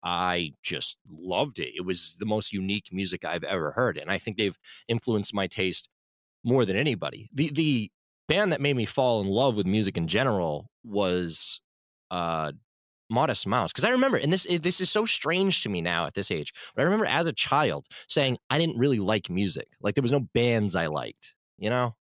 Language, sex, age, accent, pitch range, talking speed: English, male, 20-39, American, 100-140 Hz, 205 wpm